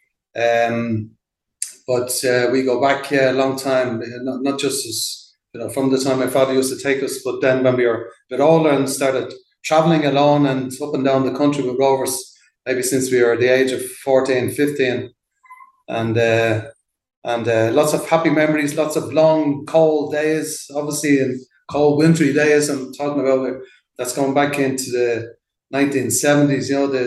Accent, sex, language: Irish, male, English